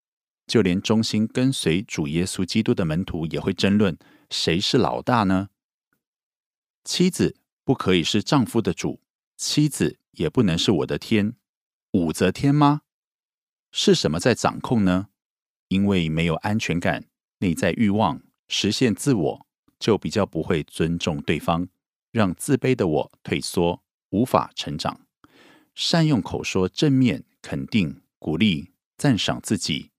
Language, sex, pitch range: Korean, male, 85-120 Hz